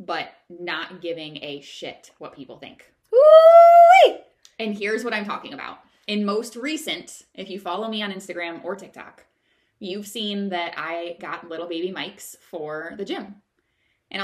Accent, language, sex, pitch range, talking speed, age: American, English, female, 175-225 Hz, 155 wpm, 20-39